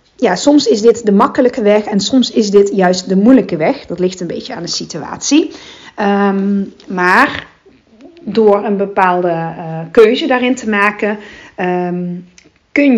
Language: Dutch